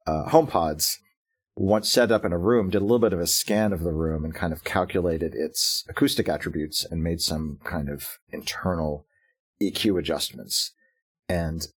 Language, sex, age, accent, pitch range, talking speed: English, male, 40-59, American, 80-100 Hz, 175 wpm